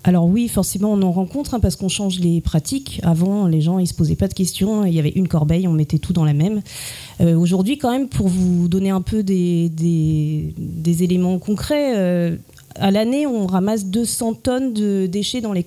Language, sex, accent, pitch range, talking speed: French, female, French, 165-200 Hz, 220 wpm